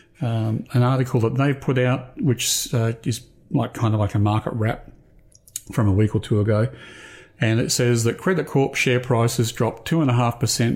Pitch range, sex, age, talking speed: 110-125 Hz, male, 40-59, 180 wpm